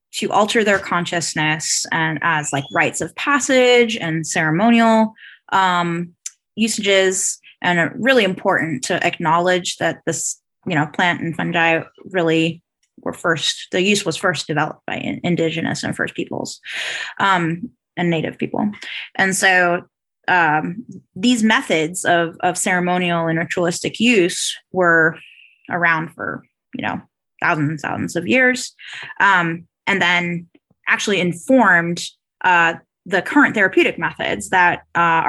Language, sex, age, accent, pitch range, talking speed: English, female, 20-39, American, 165-200 Hz, 130 wpm